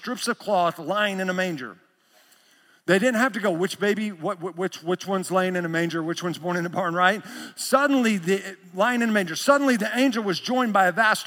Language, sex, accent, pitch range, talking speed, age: English, male, American, 175-225 Hz, 230 wpm, 50-69